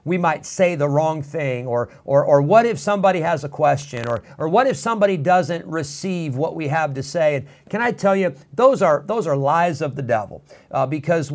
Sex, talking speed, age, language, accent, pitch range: male, 220 wpm, 50-69, English, American, 140-190 Hz